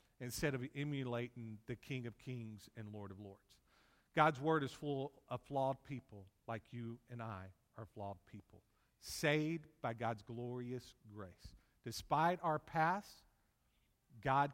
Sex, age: male, 50-69